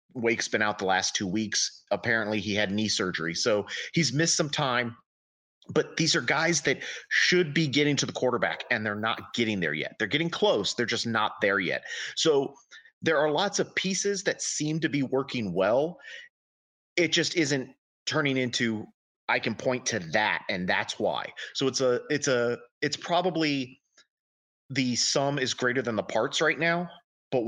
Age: 30-49